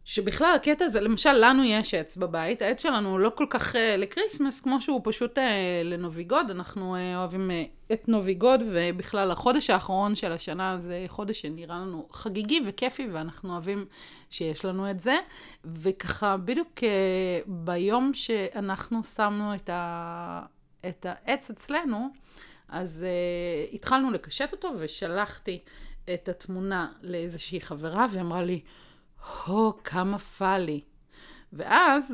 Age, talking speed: 30-49, 135 wpm